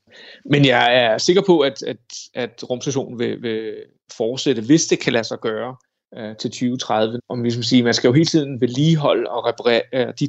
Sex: male